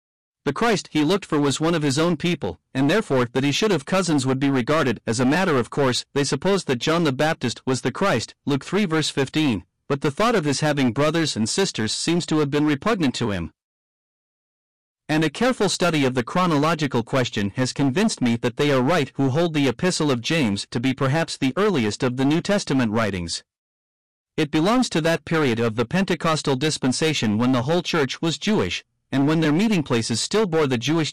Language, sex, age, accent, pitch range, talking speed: English, male, 50-69, American, 125-165 Hz, 210 wpm